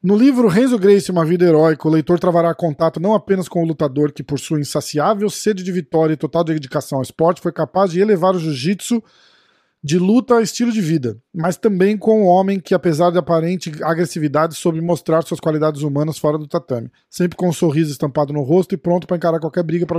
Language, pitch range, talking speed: Portuguese, 150-185 Hz, 220 wpm